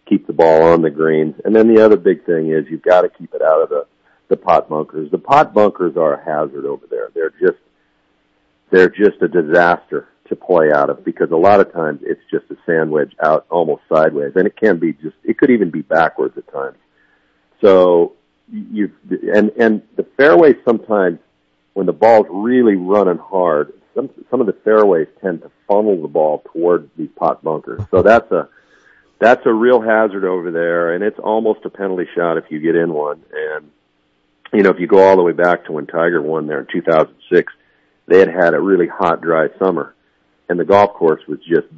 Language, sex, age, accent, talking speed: English, male, 50-69, American, 205 wpm